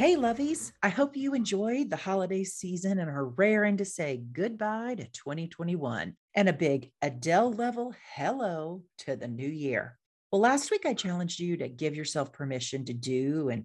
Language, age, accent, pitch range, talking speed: English, 40-59, American, 135-195 Hz, 170 wpm